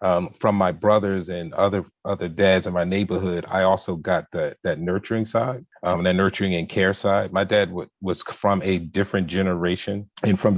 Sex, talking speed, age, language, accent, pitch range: male, 195 wpm, 30-49, English, American, 90-105 Hz